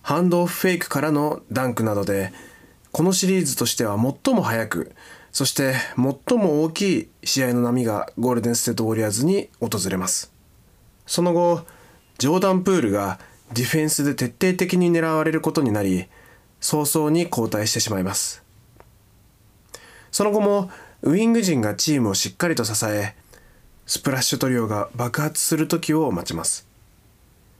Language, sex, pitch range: Japanese, male, 105-165 Hz